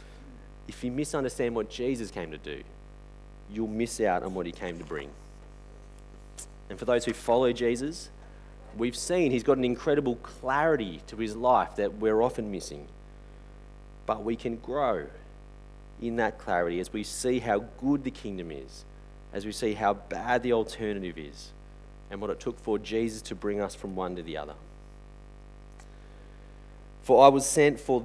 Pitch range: 95-125 Hz